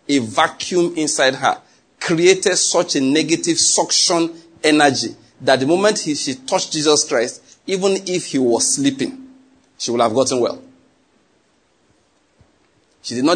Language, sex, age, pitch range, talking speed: English, male, 40-59, 130-190 Hz, 140 wpm